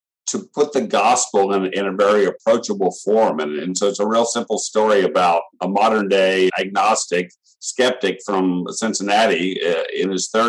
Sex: male